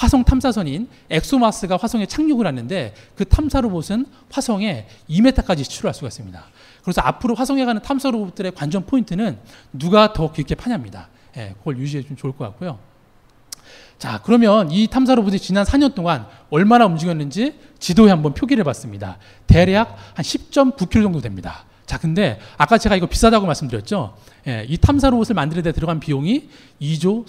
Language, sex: Korean, male